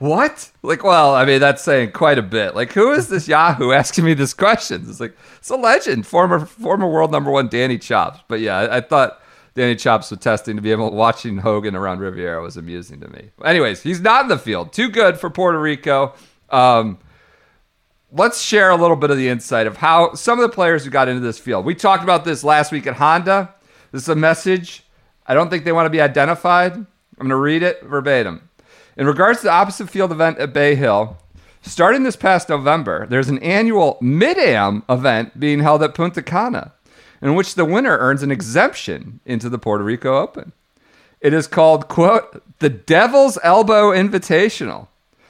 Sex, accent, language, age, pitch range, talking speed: male, American, English, 40-59, 130-185 Hz, 200 wpm